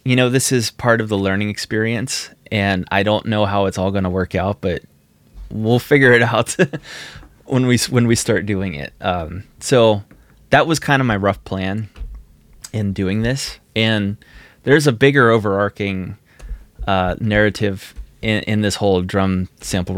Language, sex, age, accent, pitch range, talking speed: English, male, 20-39, American, 90-110 Hz, 170 wpm